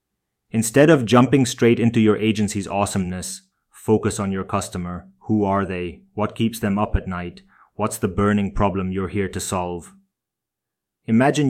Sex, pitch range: male, 95-110 Hz